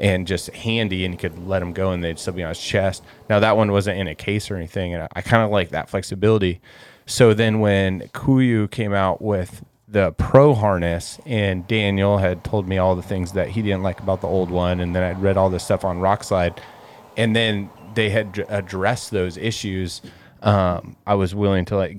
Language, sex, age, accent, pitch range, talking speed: English, male, 20-39, American, 95-110 Hz, 220 wpm